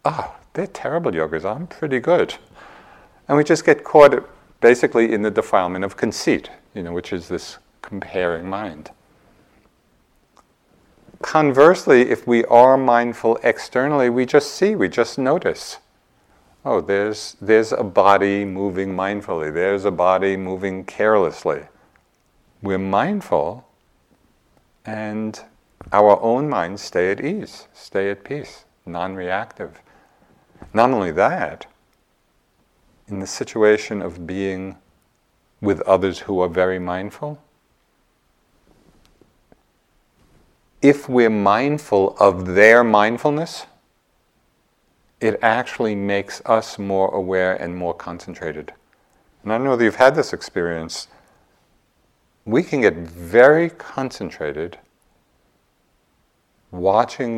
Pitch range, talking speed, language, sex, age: 95-120 Hz, 110 wpm, English, male, 50-69